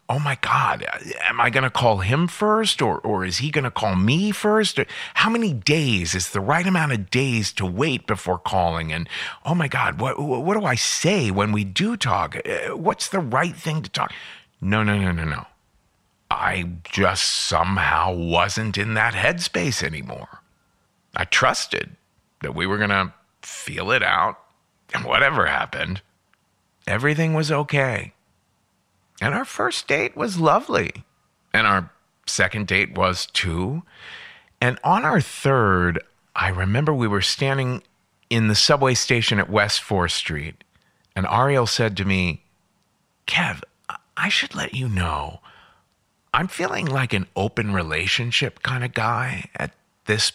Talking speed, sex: 155 wpm, male